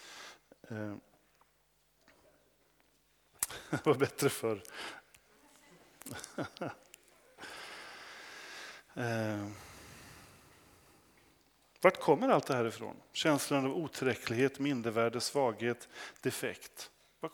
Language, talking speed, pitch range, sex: Swedish, 55 wpm, 125-165 Hz, male